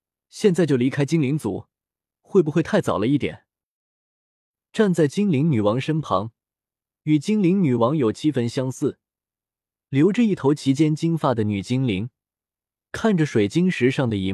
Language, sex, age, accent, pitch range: Chinese, male, 20-39, native, 120-175 Hz